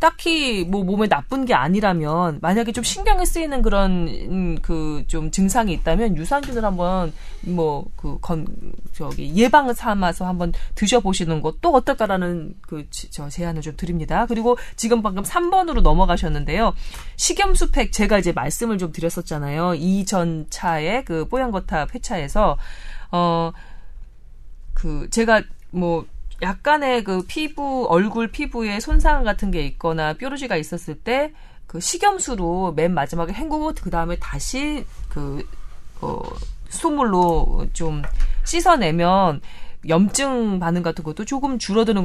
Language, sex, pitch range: Korean, female, 160-235 Hz